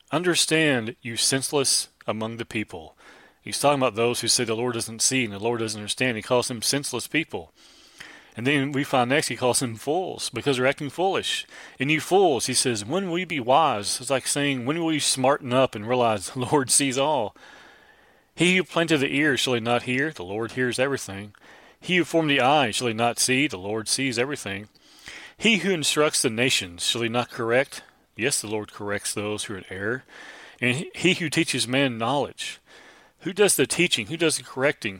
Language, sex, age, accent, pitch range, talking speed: English, male, 30-49, American, 110-145 Hz, 205 wpm